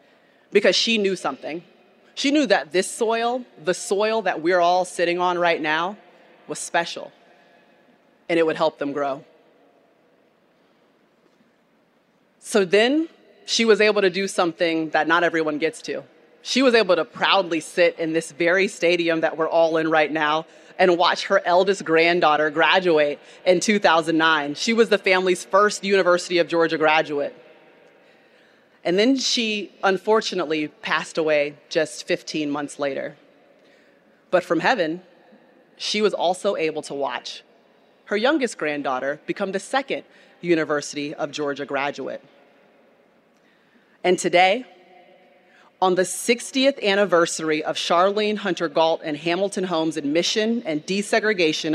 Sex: female